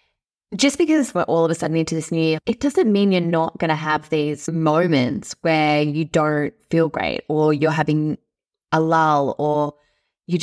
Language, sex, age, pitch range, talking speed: English, female, 20-39, 160-205 Hz, 190 wpm